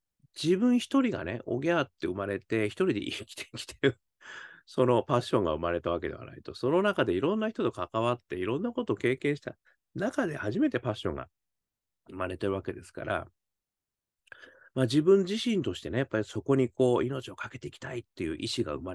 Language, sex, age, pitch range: Japanese, male, 40-59, 100-160 Hz